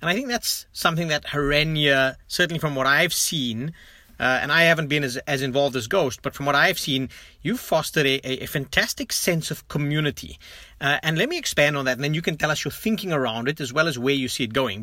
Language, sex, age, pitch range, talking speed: English, male, 30-49, 130-165 Hz, 245 wpm